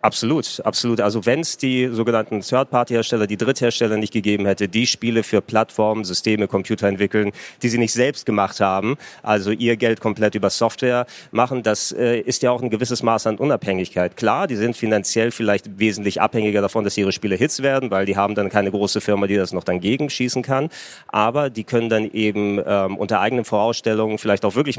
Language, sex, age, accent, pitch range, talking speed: German, male, 30-49, German, 100-120 Hz, 195 wpm